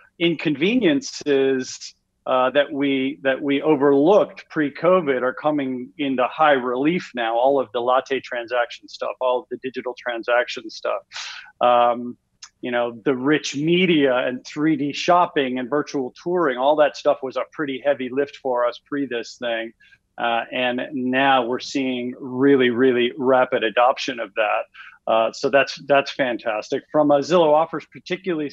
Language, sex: English, male